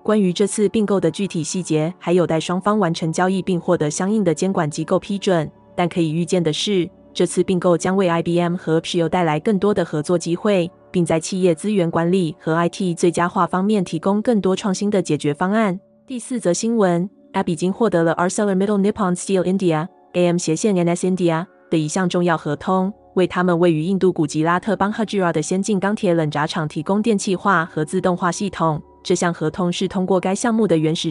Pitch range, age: 165-195 Hz, 20-39